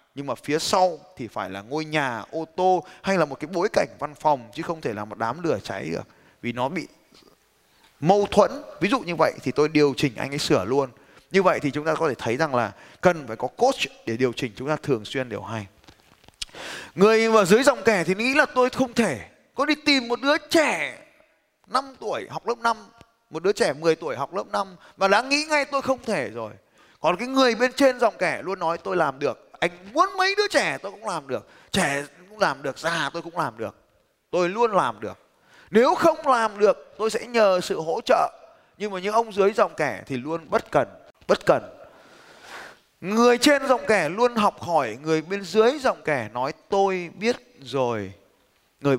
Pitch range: 145-230 Hz